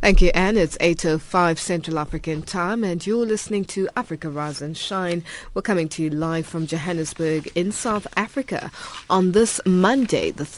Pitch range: 160-210 Hz